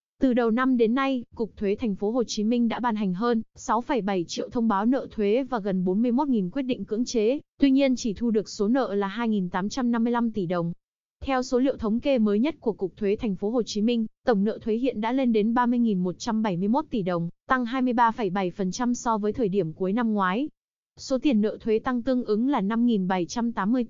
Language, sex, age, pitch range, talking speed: Vietnamese, female, 20-39, 200-245 Hz, 210 wpm